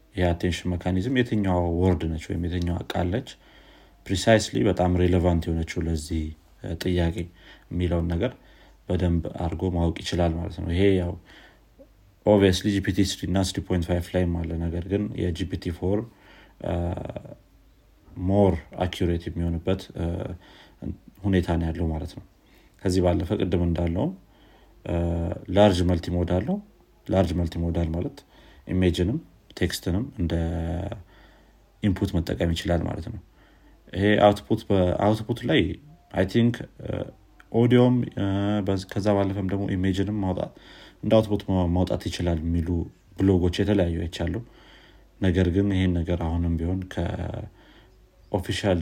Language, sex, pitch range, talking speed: Amharic, male, 85-100 Hz, 115 wpm